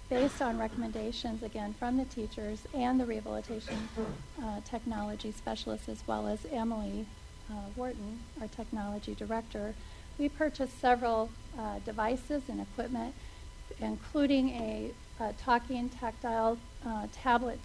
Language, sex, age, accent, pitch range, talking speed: English, female, 40-59, American, 215-250 Hz, 120 wpm